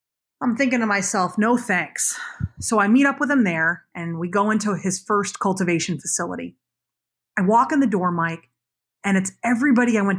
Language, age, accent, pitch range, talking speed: English, 30-49, American, 195-265 Hz, 190 wpm